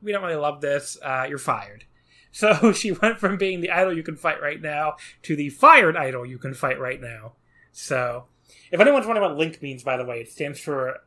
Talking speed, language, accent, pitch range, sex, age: 230 wpm, English, American, 120-155 Hz, male, 30-49